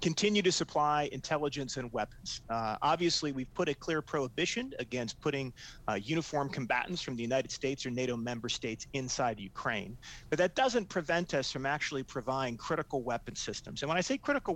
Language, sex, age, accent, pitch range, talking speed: English, male, 30-49, American, 125-160 Hz, 180 wpm